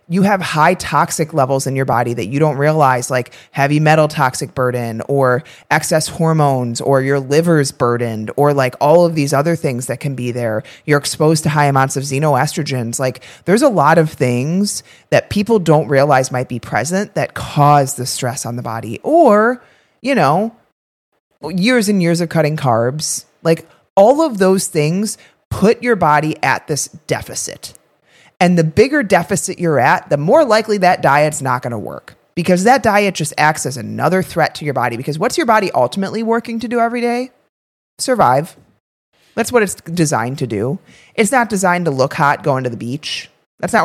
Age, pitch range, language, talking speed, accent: 30-49, 130-185 Hz, English, 185 wpm, American